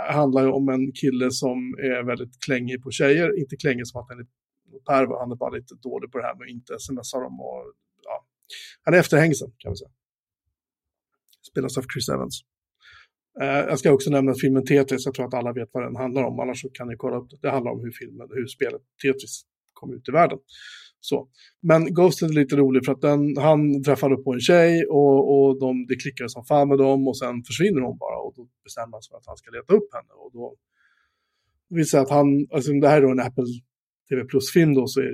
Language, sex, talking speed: Swedish, male, 225 wpm